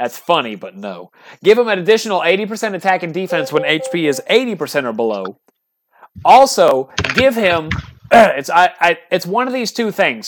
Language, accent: English, American